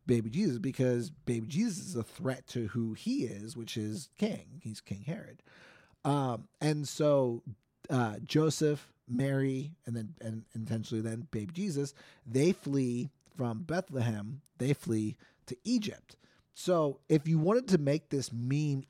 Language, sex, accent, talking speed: English, male, American, 150 wpm